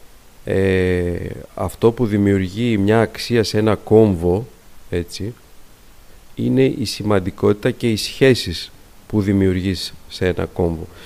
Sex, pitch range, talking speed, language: male, 95-120 Hz, 115 wpm, Greek